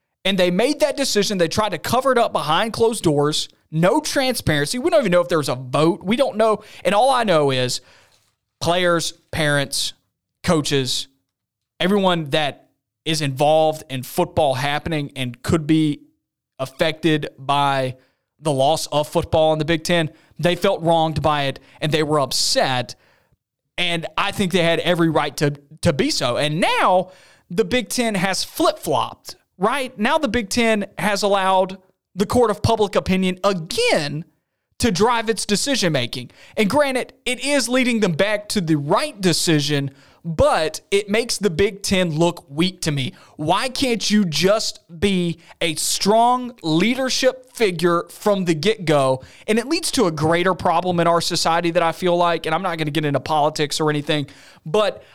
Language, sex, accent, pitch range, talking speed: English, male, American, 150-215 Hz, 170 wpm